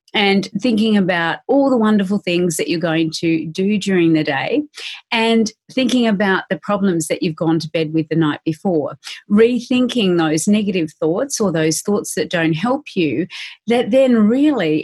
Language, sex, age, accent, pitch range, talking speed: English, female, 40-59, Australian, 180-235 Hz, 175 wpm